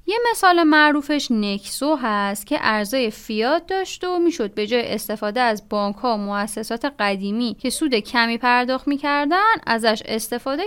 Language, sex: Persian, female